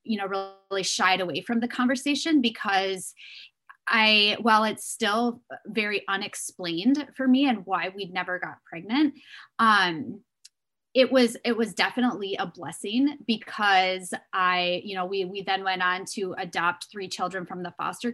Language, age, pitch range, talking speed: English, 20-39, 185-235 Hz, 155 wpm